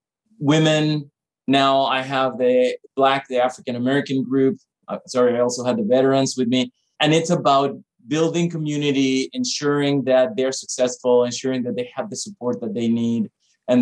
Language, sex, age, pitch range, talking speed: English, male, 30-49, 130-160 Hz, 160 wpm